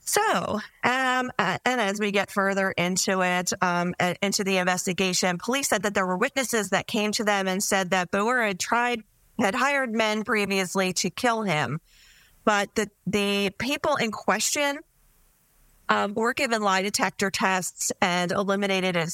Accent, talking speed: American, 155 wpm